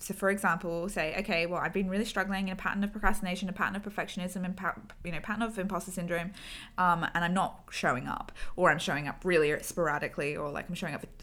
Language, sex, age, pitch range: English, female, 20-39, 165-195 Hz